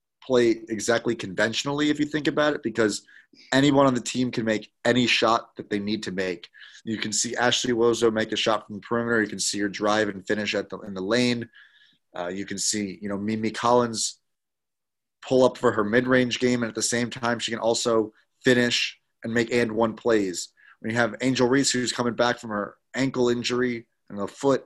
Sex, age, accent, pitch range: male, 30-49, American, 105-125 Hz